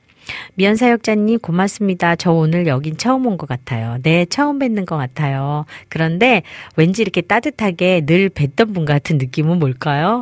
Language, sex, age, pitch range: Korean, female, 40-59, 145-215 Hz